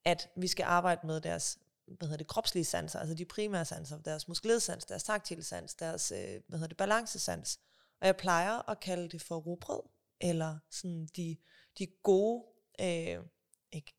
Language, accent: Danish, native